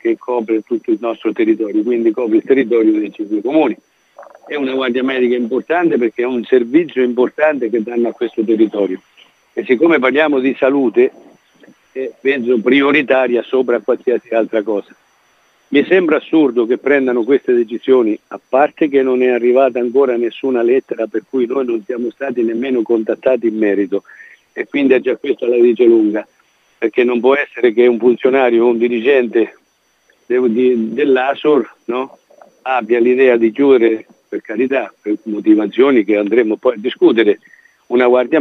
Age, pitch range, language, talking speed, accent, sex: 50-69, 120-175 Hz, Italian, 155 wpm, native, male